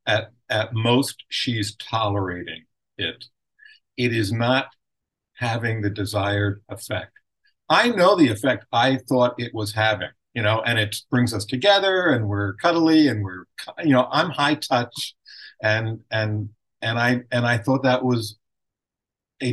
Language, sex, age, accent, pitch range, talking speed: English, male, 50-69, American, 105-130 Hz, 150 wpm